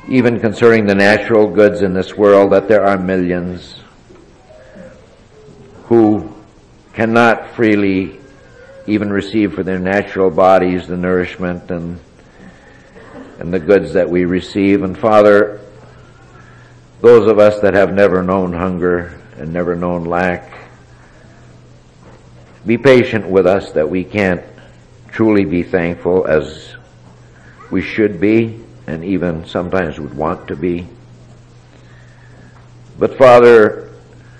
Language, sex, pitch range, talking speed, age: English, male, 90-115 Hz, 115 wpm, 60-79